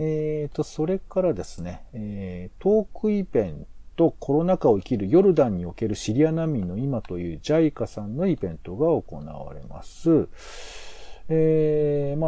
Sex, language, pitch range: male, Japanese, 95-155 Hz